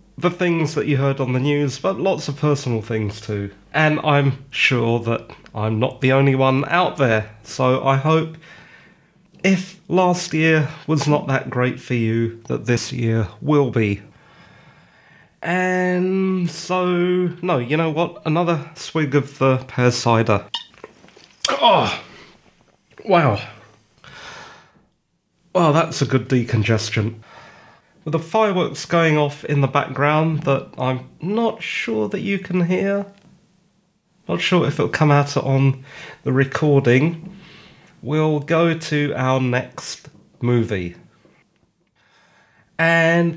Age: 30-49